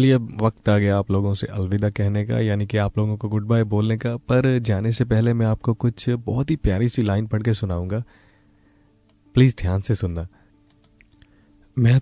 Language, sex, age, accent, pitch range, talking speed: Hindi, male, 30-49, native, 100-110 Hz, 180 wpm